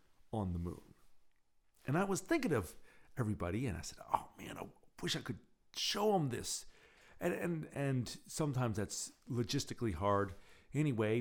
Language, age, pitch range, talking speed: English, 50-69, 95-120 Hz, 155 wpm